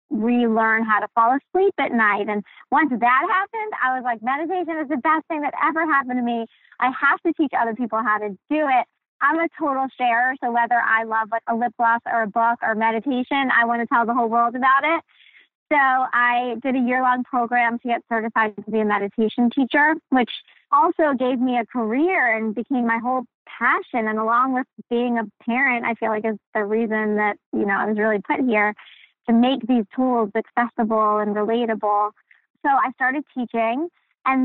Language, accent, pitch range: English, American, 225-270 Hz